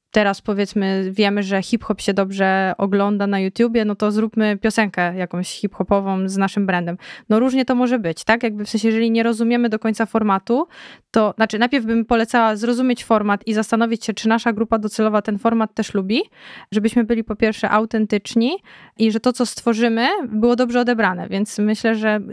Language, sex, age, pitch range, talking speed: Polish, female, 20-39, 195-225 Hz, 185 wpm